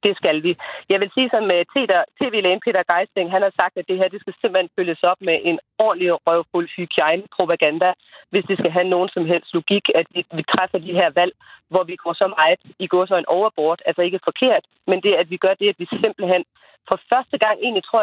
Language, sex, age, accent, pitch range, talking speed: Danish, female, 30-49, native, 170-205 Hz, 225 wpm